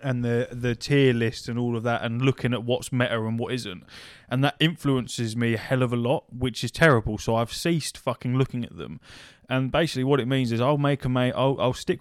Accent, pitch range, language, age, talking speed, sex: British, 115-140 Hz, English, 20-39, 245 wpm, male